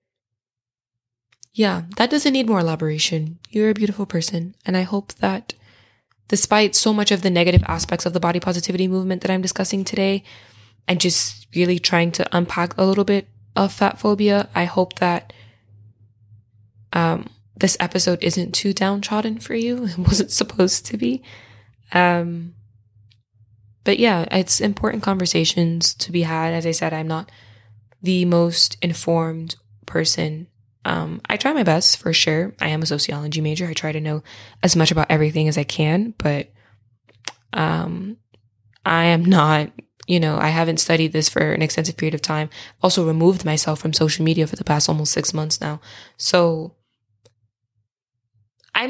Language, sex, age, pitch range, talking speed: English, female, 10-29, 135-185 Hz, 160 wpm